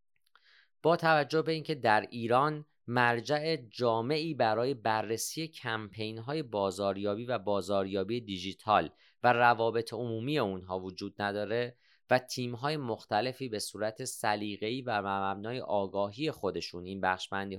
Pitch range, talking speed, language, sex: 100-125 Hz, 120 wpm, Persian, male